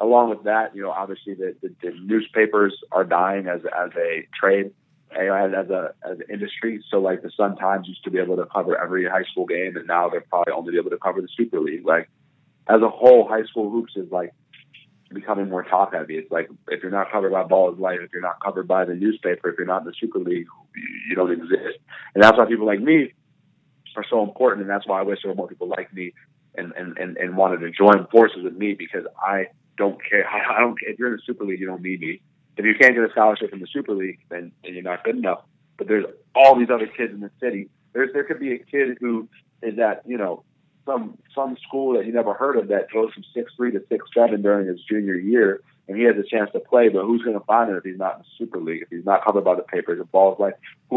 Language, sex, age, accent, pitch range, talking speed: English, male, 30-49, American, 95-125 Hz, 260 wpm